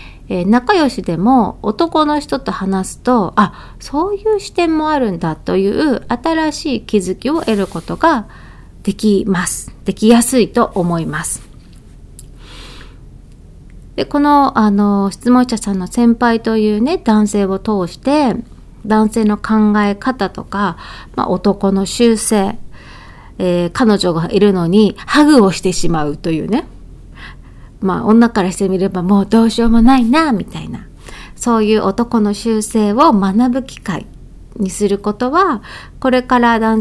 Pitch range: 195-245 Hz